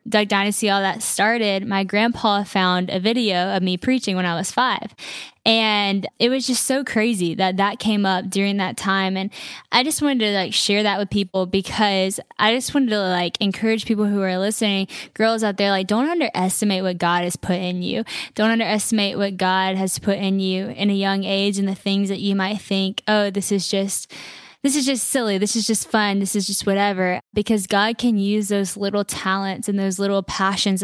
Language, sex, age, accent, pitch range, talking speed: English, female, 10-29, American, 190-215 Hz, 210 wpm